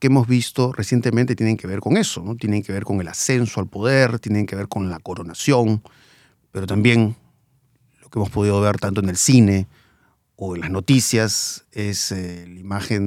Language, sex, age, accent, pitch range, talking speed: Spanish, male, 40-59, Mexican, 100-145 Hz, 195 wpm